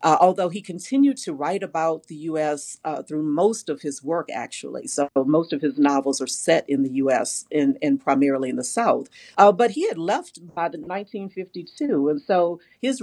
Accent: American